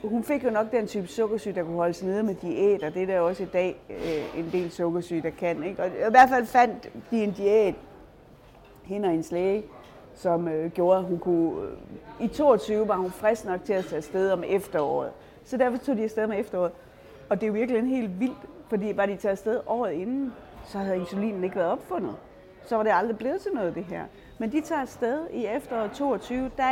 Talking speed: 230 wpm